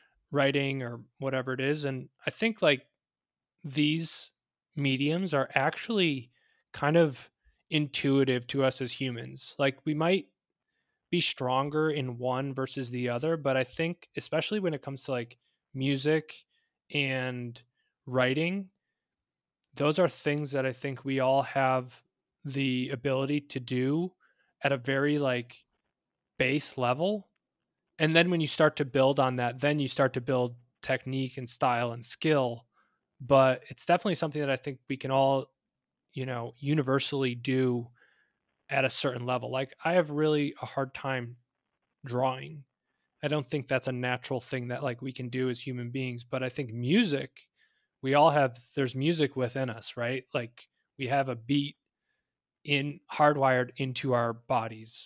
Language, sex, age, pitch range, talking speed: English, male, 20-39, 125-150 Hz, 155 wpm